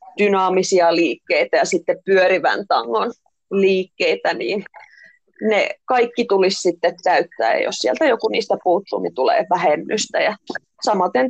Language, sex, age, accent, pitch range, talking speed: Finnish, female, 30-49, native, 195-275 Hz, 120 wpm